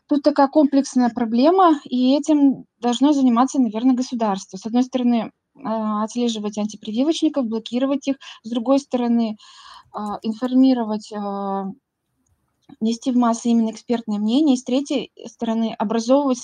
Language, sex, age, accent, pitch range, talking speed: Russian, female, 20-39, native, 215-265 Hz, 115 wpm